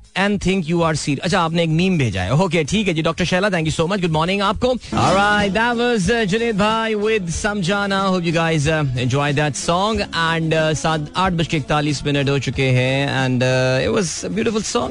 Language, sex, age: Hindi, male, 30-49